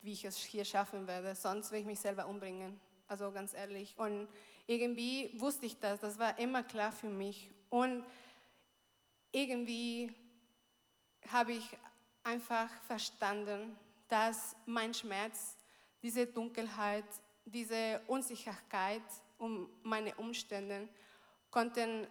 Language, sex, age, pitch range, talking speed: English, female, 20-39, 210-245 Hz, 115 wpm